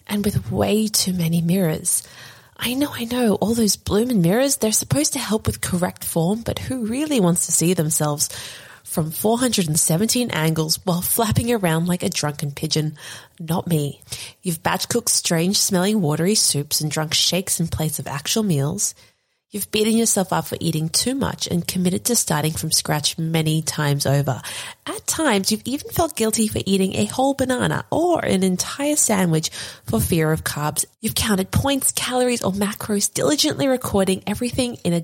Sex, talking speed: female, 175 wpm